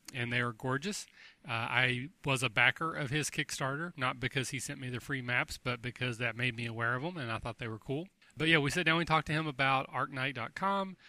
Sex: male